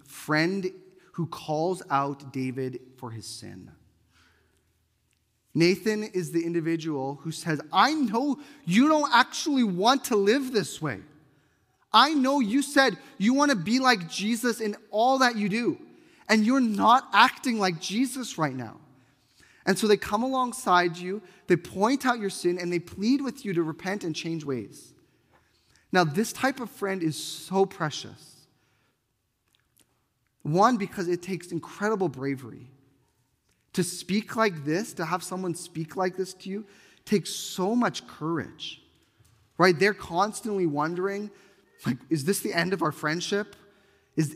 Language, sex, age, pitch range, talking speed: English, male, 30-49, 145-205 Hz, 150 wpm